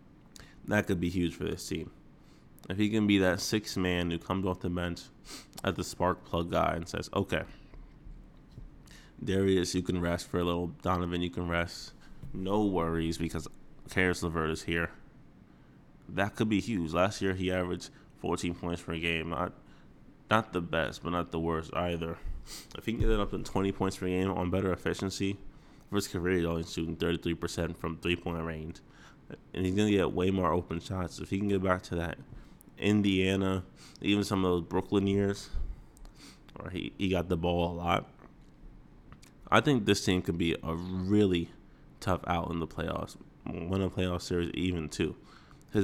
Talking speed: 185 wpm